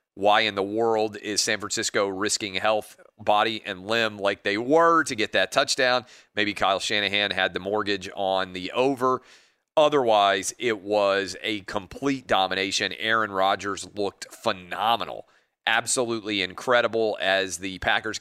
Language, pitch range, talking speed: English, 95-110 Hz, 140 wpm